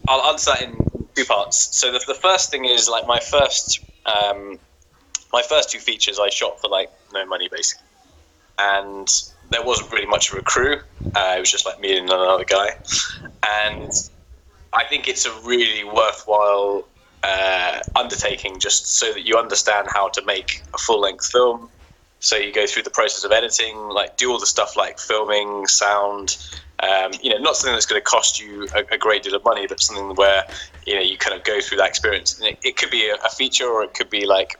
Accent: British